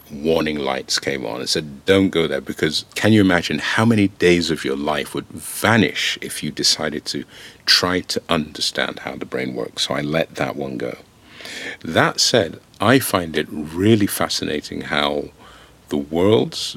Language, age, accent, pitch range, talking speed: English, 50-69, British, 80-100 Hz, 170 wpm